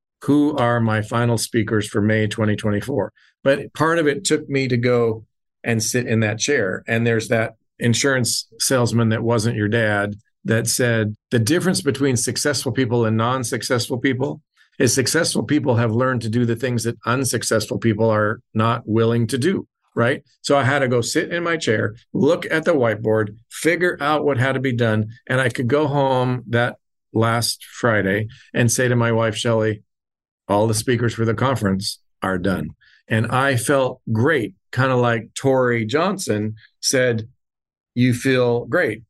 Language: English